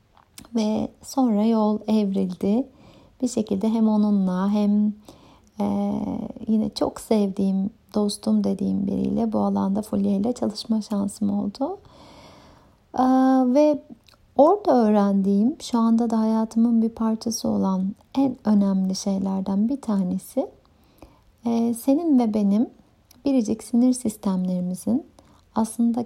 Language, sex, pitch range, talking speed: Turkish, female, 205-240 Hz, 100 wpm